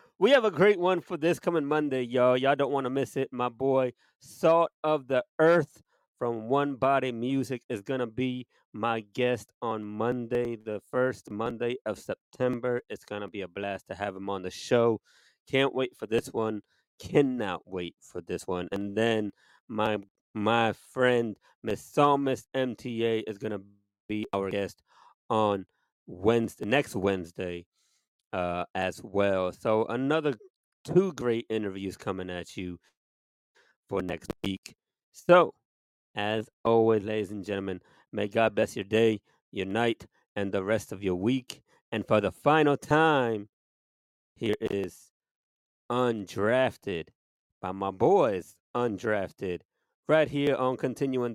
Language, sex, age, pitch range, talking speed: English, male, 30-49, 100-130 Hz, 150 wpm